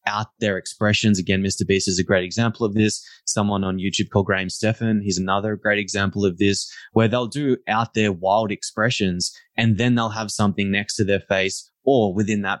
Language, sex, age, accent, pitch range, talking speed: English, male, 20-39, Australian, 95-110 Hz, 205 wpm